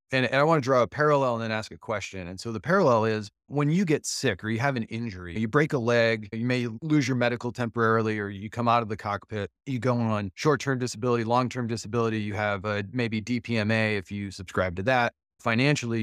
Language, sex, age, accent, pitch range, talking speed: English, male, 30-49, American, 100-120 Hz, 230 wpm